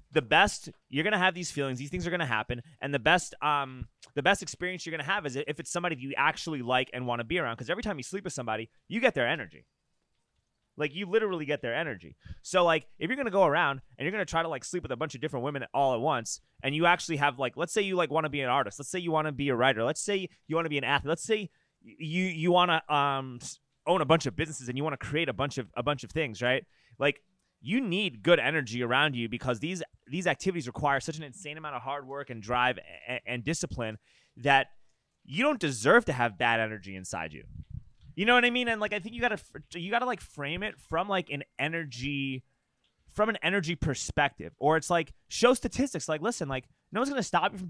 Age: 20-39